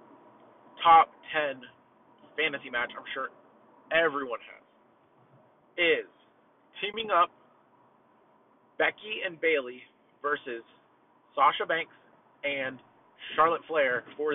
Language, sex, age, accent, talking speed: English, male, 30-49, American, 90 wpm